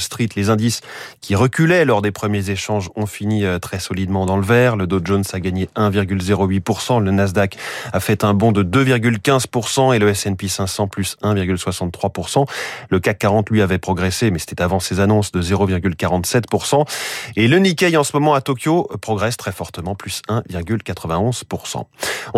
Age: 30-49